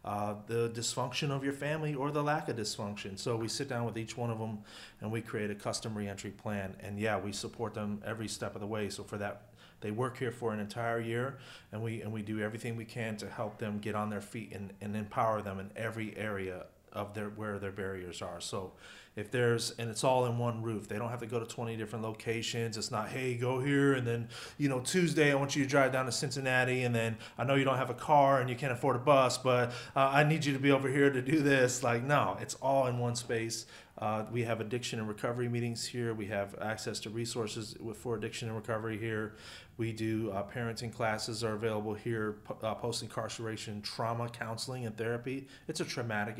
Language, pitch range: English, 105-125 Hz